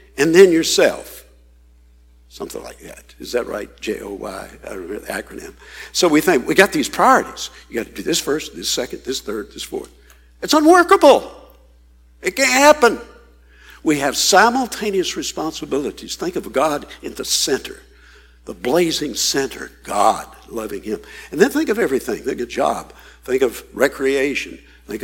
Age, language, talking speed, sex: 60-79, English, 160 wpm, male